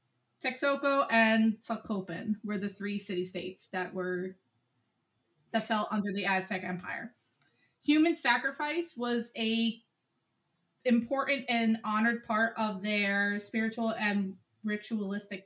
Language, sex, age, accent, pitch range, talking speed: English, female, 20-39, American, 195-235 Hz, 110 wpm